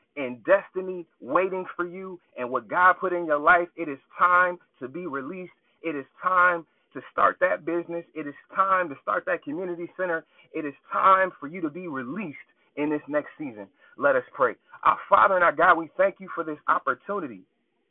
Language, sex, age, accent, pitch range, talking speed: English, male, 30-49, American, 145-195 Hz, 200 wpm